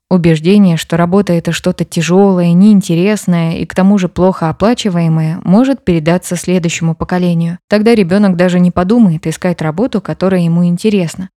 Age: 20-39